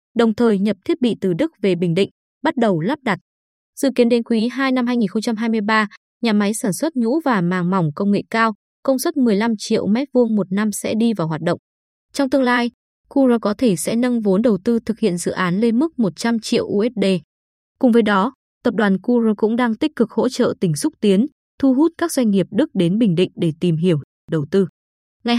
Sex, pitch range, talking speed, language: female, 195-245 Hz, 225 wpm, Vietnamese